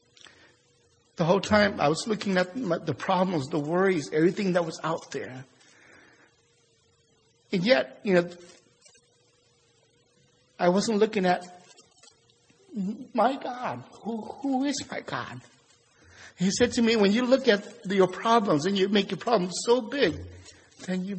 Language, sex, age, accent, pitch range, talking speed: English, male, 60-79, American, 125-205 Hz, 145 wpm